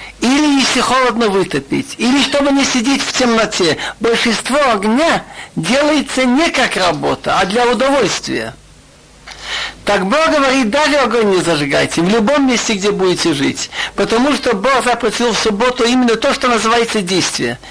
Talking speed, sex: 145 wpm, male